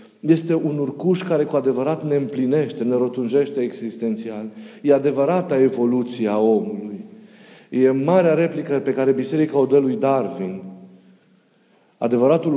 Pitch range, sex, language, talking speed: 115-150 Hz, male, Romanian, 130 wpm